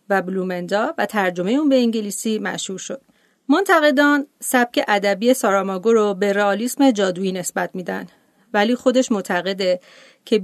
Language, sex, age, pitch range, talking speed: Persian, female, 40-59, 195-245 Hz, 130 wpm